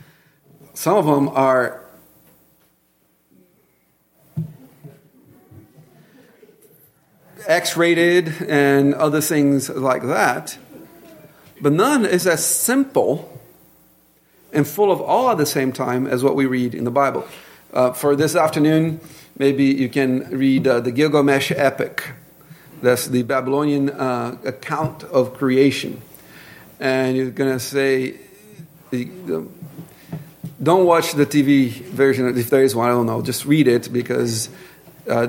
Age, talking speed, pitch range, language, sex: 50-69, 125 wpm, 130-160 Hz, English, male